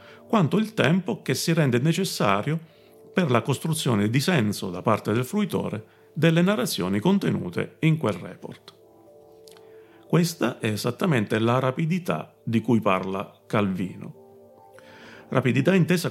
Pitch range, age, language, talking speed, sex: 110-160 Hz, 40-59, Italian, 125 wpm, male